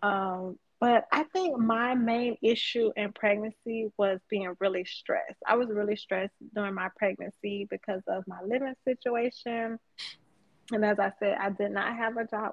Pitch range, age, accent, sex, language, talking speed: 195-230 Hz, 20-39, American, female, English, 170 wpm